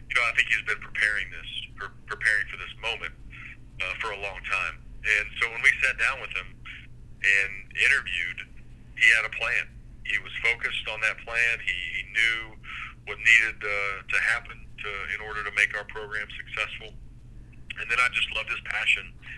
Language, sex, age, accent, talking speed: English, male, 40-59, American, 185 wpm